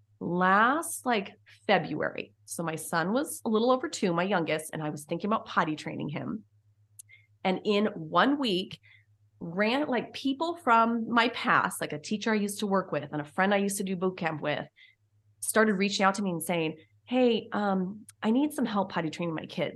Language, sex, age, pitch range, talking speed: English, female, 30-49, 150-210 Hz, 200 wpm